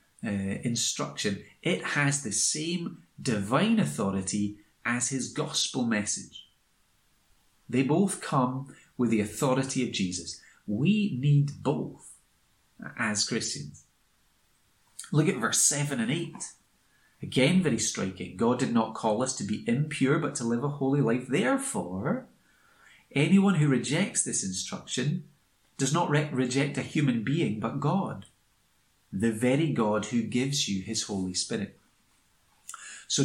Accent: British